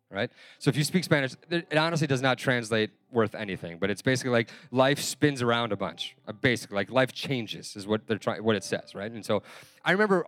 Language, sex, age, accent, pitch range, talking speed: English, male, 30-49, American, 115-155 Hz, 220 wpm